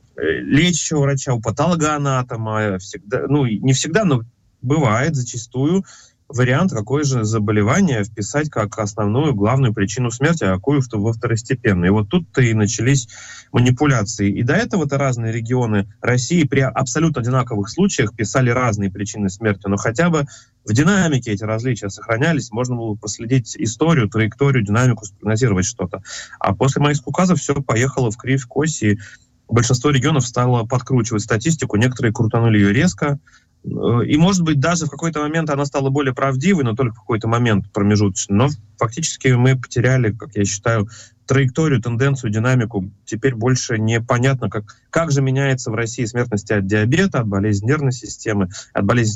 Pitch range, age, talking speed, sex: 110-140 Hz, 20-39, 150 wpm, male